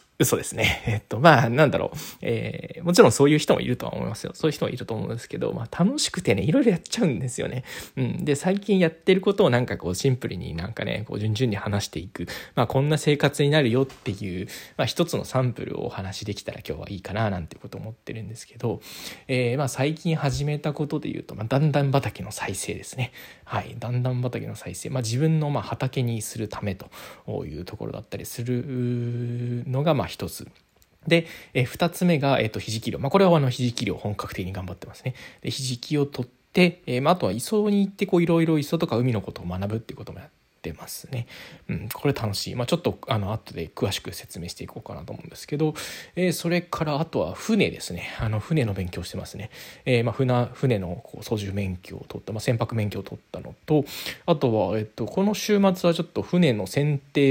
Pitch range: 110-150 Hz